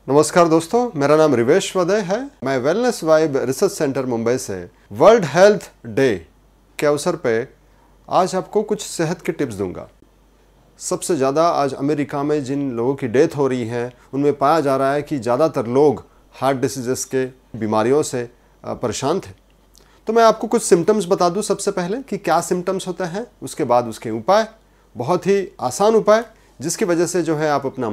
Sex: male